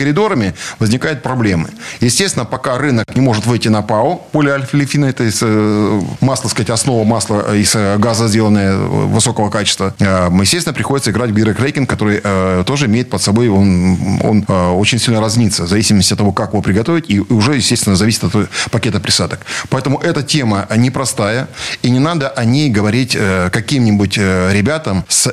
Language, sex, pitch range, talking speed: Russian, male, 100-130 Hz, 155 wpm